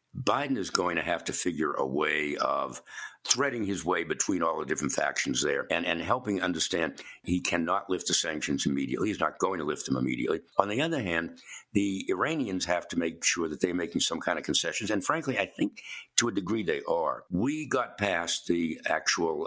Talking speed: 205 wpm